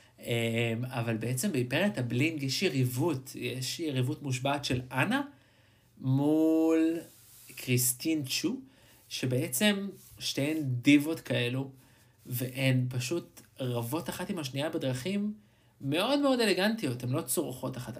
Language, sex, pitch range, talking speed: Hebrew, male, 125-155 Hz, 105 wpm